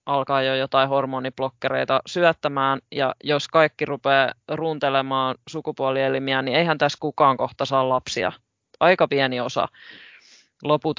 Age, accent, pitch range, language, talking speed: 20-39, native, 135-165 Hz, Finnish, 120 wpm